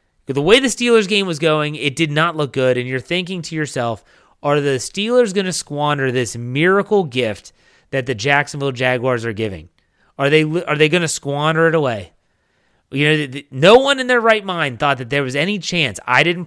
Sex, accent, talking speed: male, American, 210 wpm